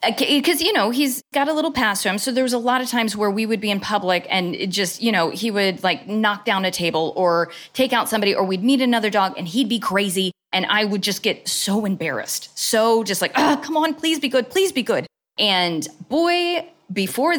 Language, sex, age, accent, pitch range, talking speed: English, female, 20-39, American, 185-260 Hz, 235 wpm